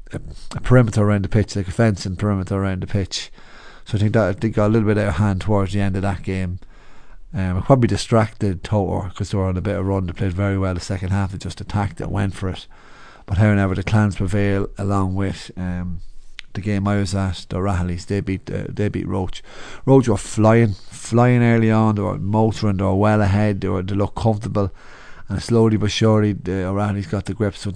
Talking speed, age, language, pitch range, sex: 225 wpm, 30-49, English, 95-110 Hz, male